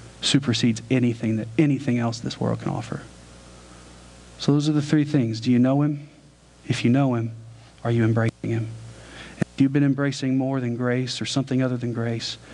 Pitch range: 115-135 Hz